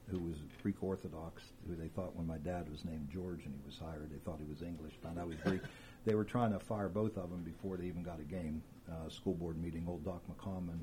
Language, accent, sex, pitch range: English, American, male, 85-100 Hz